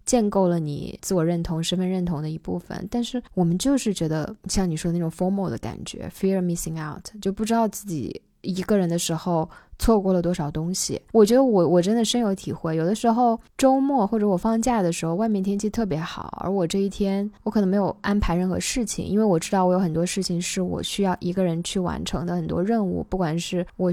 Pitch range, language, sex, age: 170-220 Hz, Chinese, female, 20-39